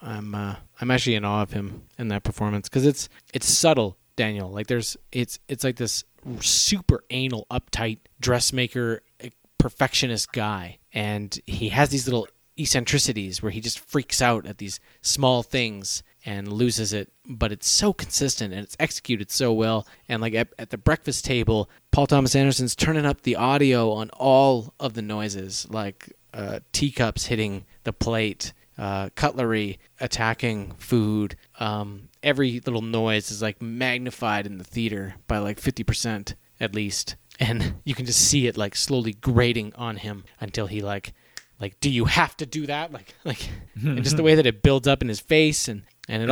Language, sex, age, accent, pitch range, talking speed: English, male, 30-49, American, 105-130 Hz, 175 wpm